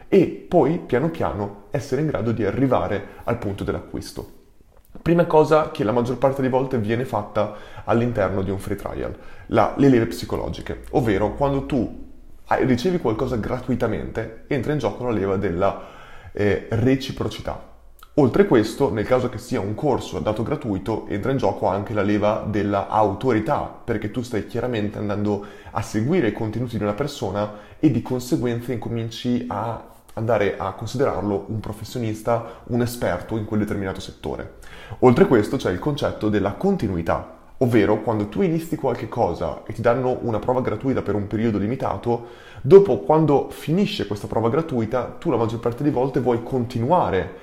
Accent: native